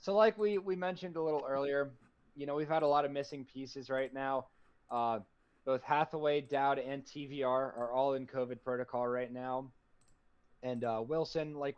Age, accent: 20-39, American